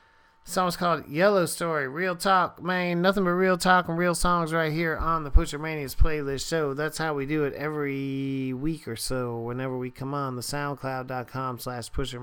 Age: 40-59